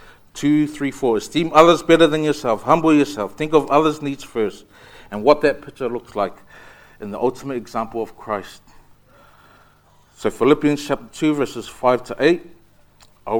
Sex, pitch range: male, 110-135 Hz